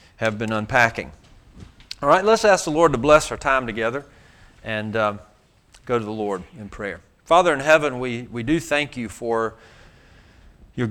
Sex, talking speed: male, 175 wpm